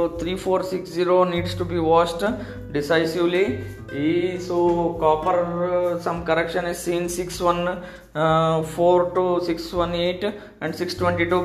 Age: 20-39